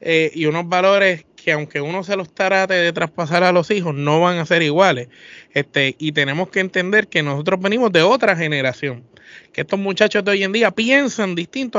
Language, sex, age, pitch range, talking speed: Spanish, male, 20-39, 155-205 Hz, 205 wpm